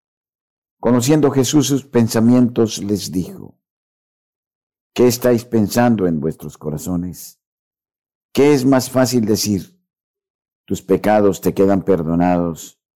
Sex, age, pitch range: male, 50-69, 80-100 Hz